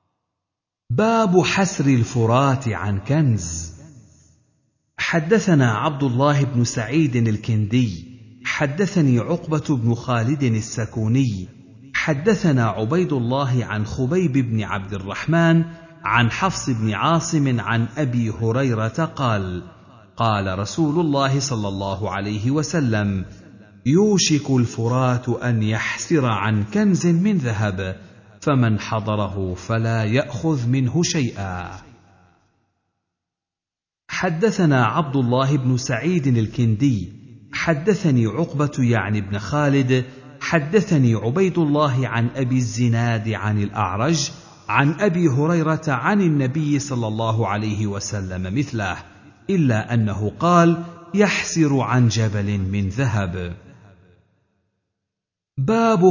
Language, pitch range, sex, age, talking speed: Arabic, 105-155 Hz, male, 50-69, 95 wpm